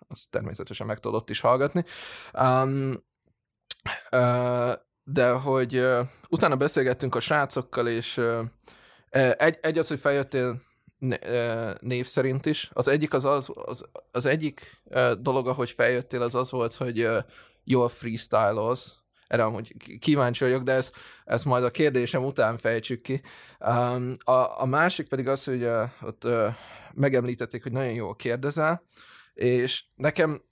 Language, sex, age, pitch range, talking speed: Hungarian, male, 20-39, 120-140 Hz, 130 wpm